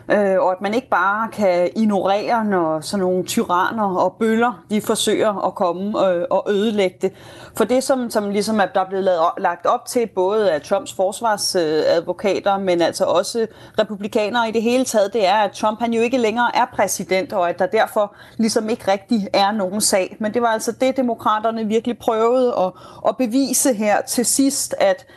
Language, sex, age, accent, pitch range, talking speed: Danish, female, 30-49, native, 195-240 Hz, 185 wpm